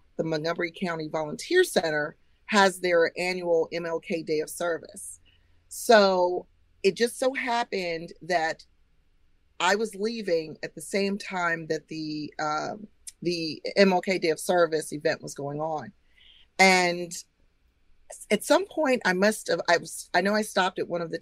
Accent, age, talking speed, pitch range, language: American, 40-59, 155 wpm, 160-205 Hz, English